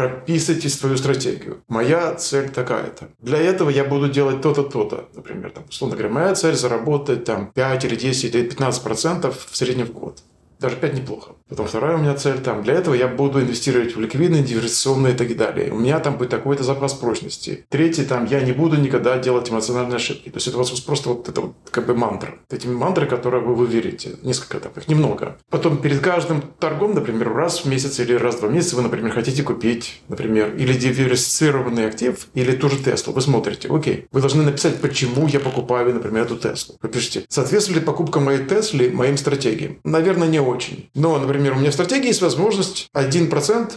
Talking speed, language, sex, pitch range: 200 wpm, Russian, male, 125-160 Hz